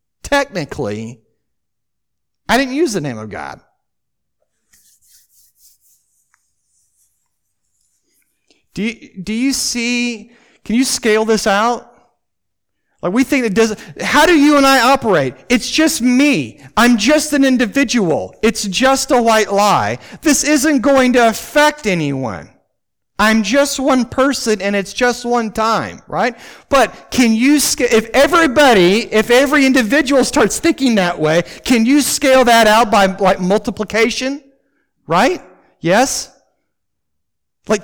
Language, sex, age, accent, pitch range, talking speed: English, male, 40-59, American, 210-265 Hz, 125 wpm